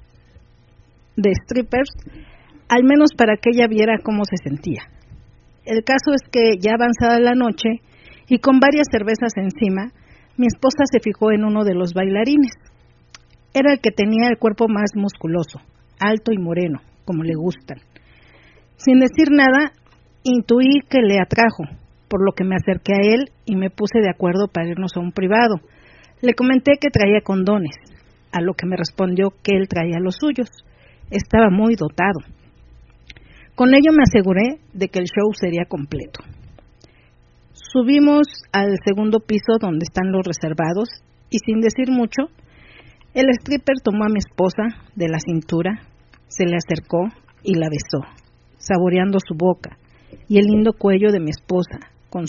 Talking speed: 155 wpm